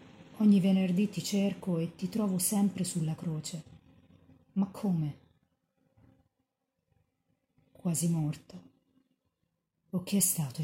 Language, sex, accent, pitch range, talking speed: Italian, female, native, 150-200 Hz, 100 wpm